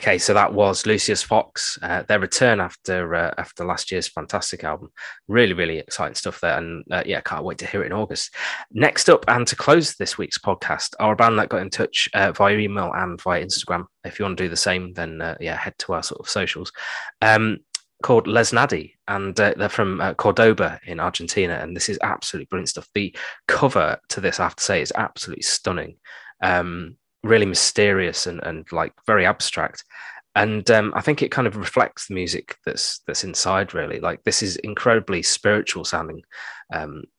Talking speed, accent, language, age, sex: 200 wpm, British, English, 20-39, male